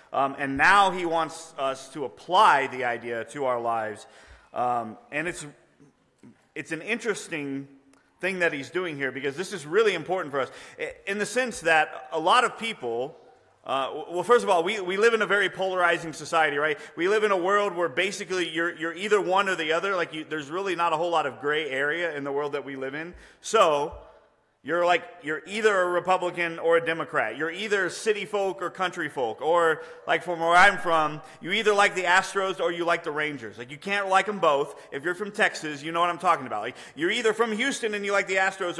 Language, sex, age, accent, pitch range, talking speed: English, male, 30-49, American, 150-195 Hz, 225 wpm